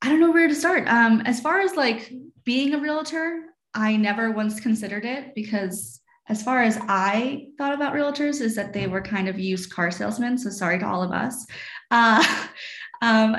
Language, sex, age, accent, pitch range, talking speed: English, female, 20-39, American, 200-265 Hz, 195 wpm